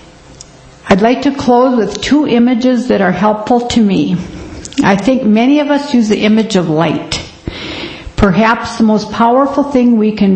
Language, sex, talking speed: English, female, 170 wpm